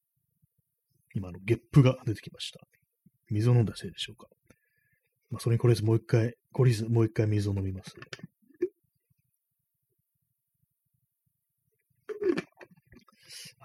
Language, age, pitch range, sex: Japanese, 30-49, 105-135 Hz, male